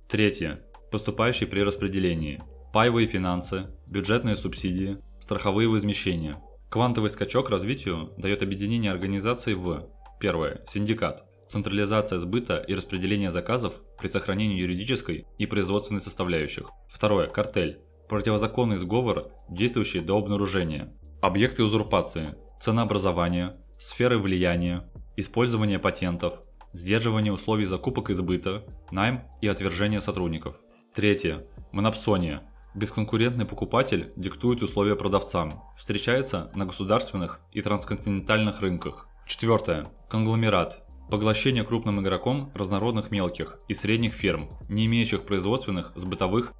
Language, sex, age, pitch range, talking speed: Russian, male, 20-39, 90-110 Hz, 105 wpm